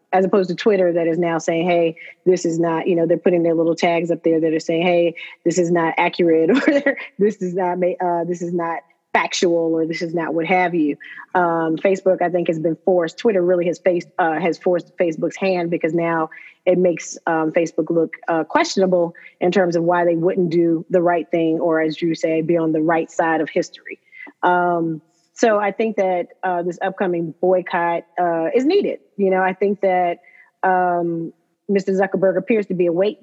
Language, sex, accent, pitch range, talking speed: English, female, American, 170-190 Hz, 210 wpm